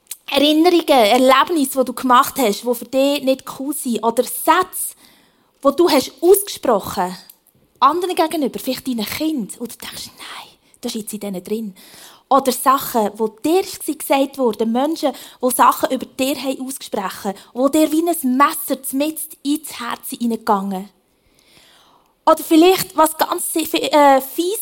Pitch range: 255-335 Hz